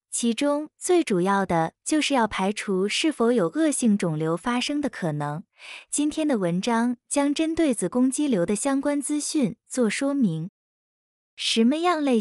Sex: female